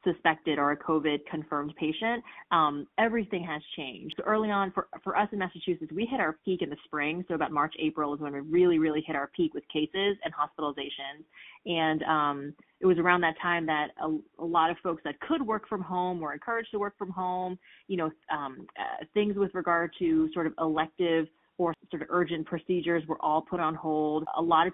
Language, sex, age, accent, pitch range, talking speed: English, female, 30-49, American, 155-180 Hz, 215 wpm